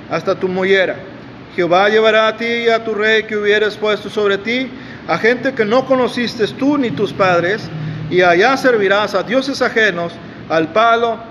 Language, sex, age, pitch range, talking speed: Spanish, male, 40-59, 185-225 Hz, 175 wpm